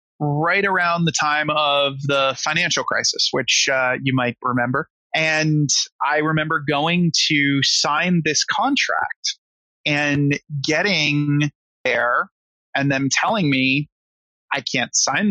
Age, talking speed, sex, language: 30-49, 120 wpm, male, English